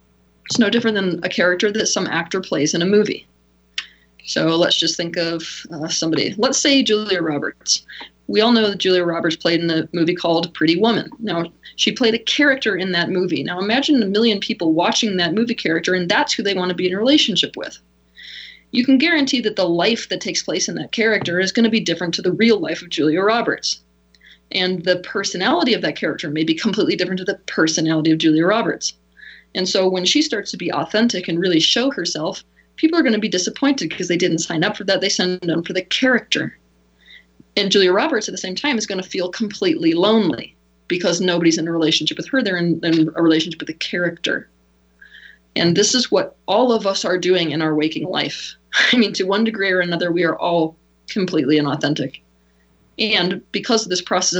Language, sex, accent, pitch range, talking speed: English, female, American, 165-215 Hz, 210 wpm